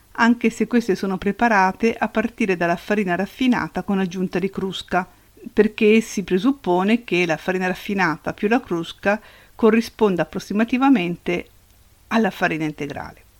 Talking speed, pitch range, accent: 130 wpm, 175-210 Hz, native